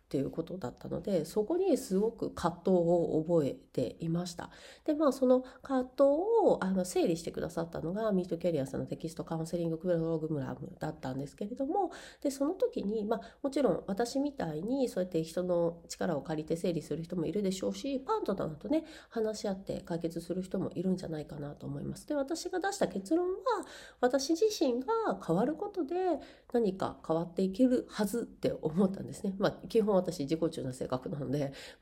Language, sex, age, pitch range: Japanese, female, 30-49, 165-260 Hz